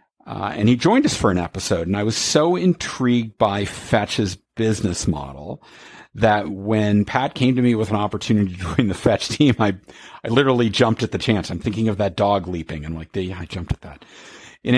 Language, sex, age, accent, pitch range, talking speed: English, male, 50-69, American, 95-115 Hz, 210 wpm